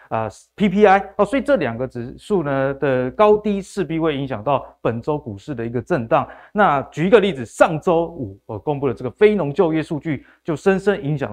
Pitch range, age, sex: 130-205 Hz, 20-39, male